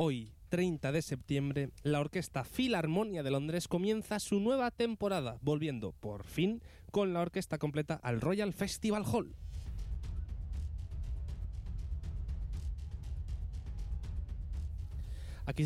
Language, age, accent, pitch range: Spanish, 20-39, Spanish, 110-175 Hz